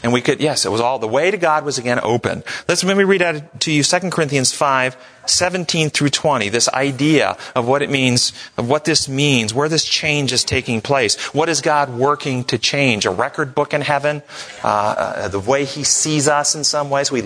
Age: 40-59